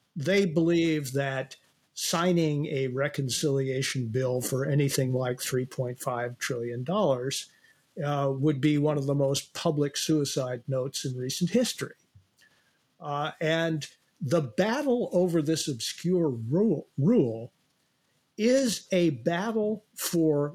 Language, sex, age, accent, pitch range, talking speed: English, male, 50-69, American, 135-170 Hz, 110 wpm